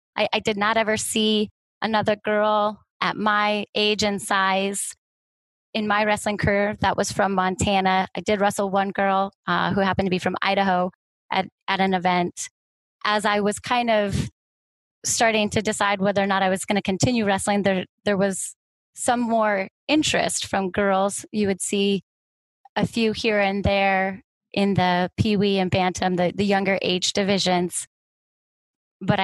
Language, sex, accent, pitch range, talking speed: English, female, American, 190-210 Hz, 170 wpm